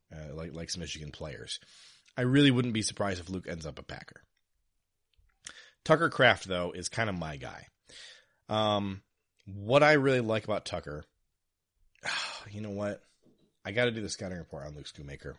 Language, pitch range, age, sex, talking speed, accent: English, 90-125 Hz, 30-49, male, 180 wpm, American